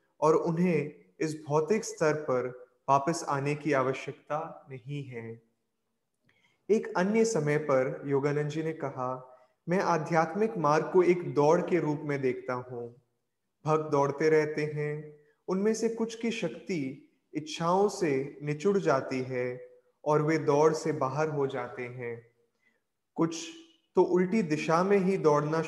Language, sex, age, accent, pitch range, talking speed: Hindi, male, 30-49, native, 130-175 Hz, 140 wpm